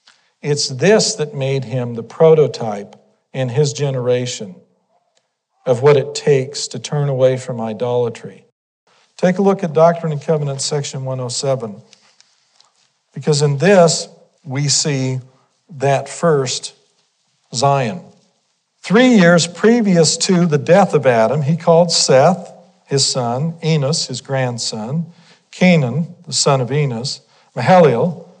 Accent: American